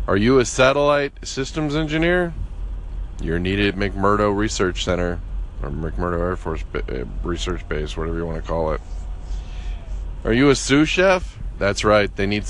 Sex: male